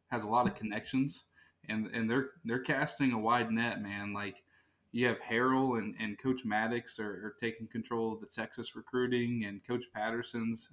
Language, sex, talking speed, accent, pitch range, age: English, male, 185 wpm, American, 105-120 Hz, 20-39